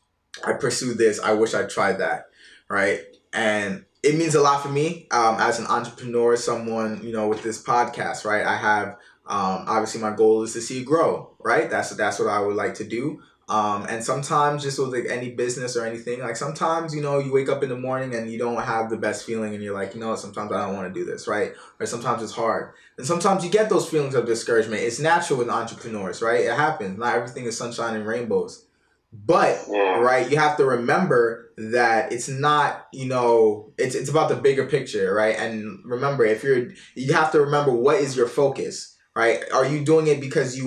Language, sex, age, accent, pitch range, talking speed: English, male, 20-39, American, 115-150 Hz, 220 wpm